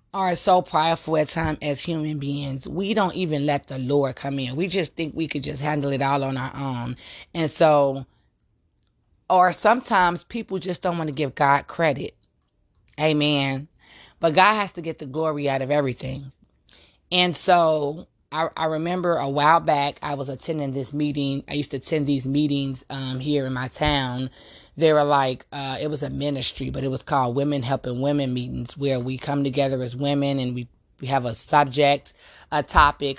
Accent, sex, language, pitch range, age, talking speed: American, female, English, 135-155 Hz, 20-39, 190 wpm